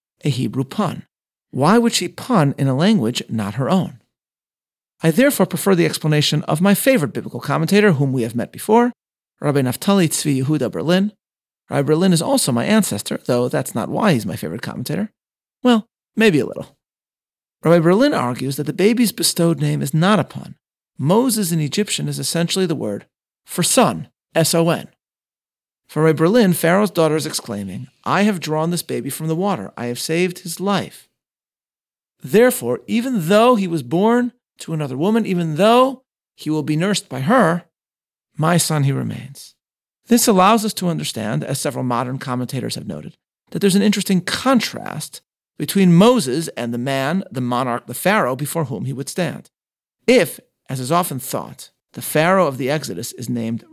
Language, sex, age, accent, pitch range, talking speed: English, male, 40-59, American, 140-200 Hz, 175 wpm